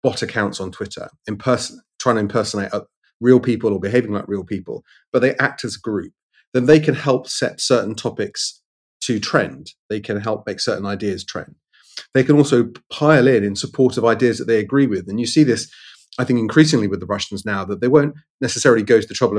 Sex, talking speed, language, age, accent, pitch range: male, 215 wpm, English, 30-49, British, 100-120 Hz